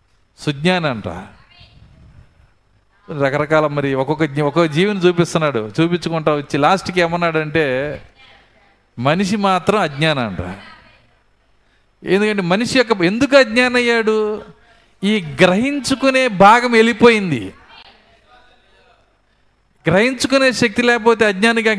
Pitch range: 145-200 Hz